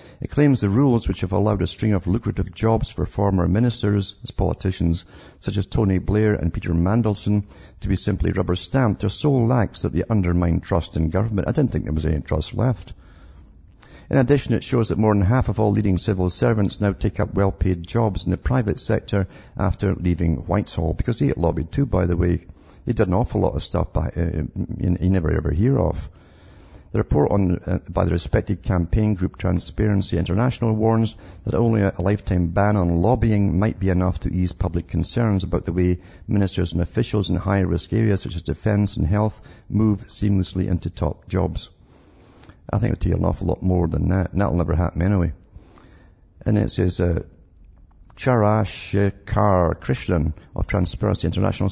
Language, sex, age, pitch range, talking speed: English, male, 50-69, 90-105 Hz, 185 wpm